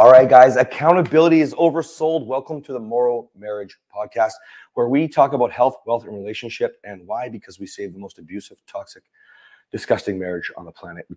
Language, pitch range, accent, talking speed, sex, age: English, 105-160 Hz, American, 190 wpm, male, 30-49